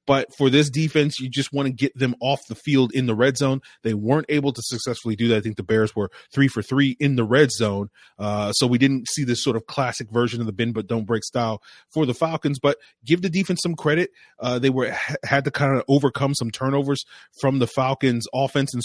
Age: 30-49